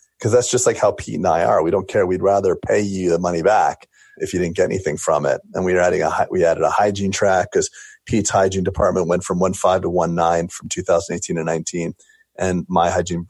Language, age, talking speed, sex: English, 30-49, 240 wpm, male